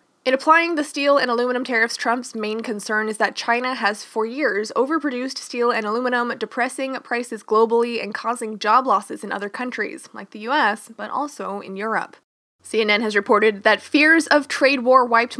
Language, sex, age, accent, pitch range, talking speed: English, female, 20-39, American, 215-275 Hz, 180 wpm